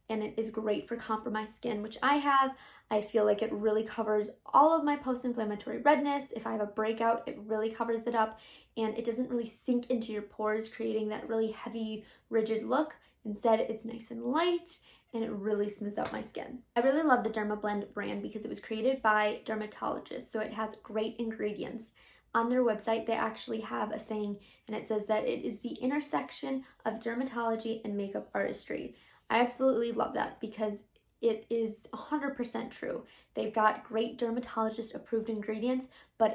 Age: 20-39